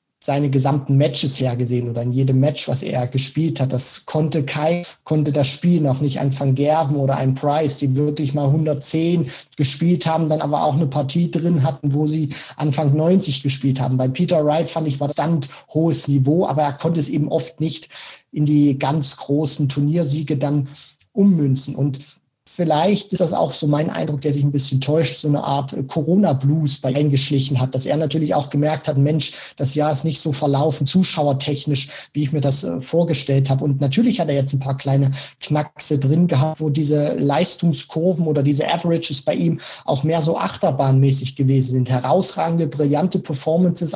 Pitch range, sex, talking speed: 140-160 Hz, male, 185 wpm